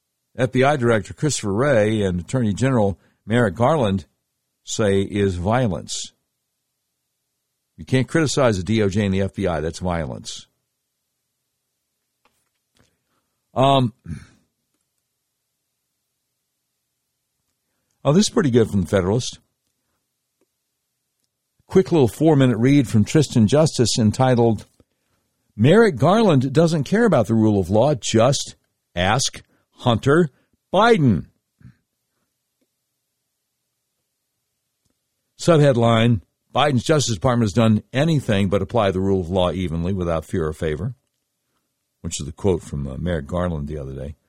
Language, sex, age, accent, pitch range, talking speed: English, male, 60-79, American, 95-130 Hz, 110 wpm